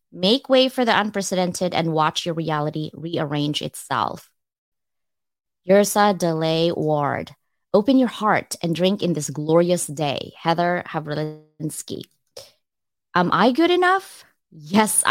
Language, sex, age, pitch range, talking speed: English, female, 20-39, 160-200 Hz, 120 wpm